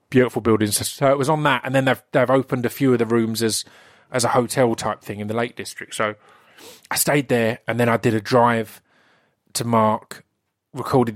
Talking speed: 215 wpm